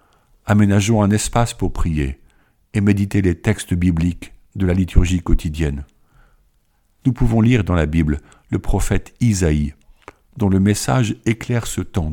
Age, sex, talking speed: 50-69, male, 145 wpm